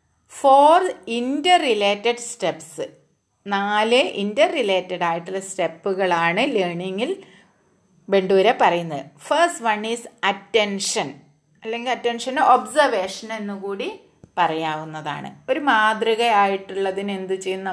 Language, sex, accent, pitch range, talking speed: Malayalam, female, native, 180-235 Hz, 80 wpm